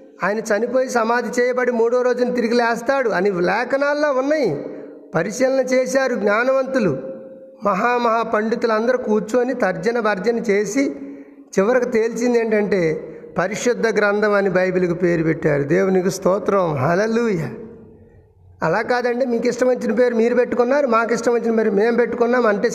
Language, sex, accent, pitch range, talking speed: Telugu, male, native, 200-250 Hz, 115 wpm